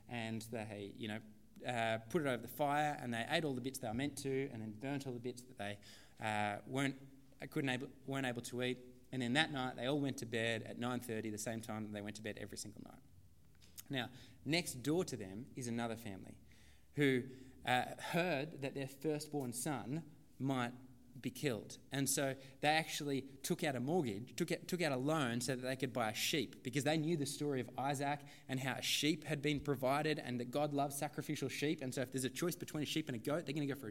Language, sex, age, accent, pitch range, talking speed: English, male, 20-39, Australian, 130-155 Hz, 235 wpm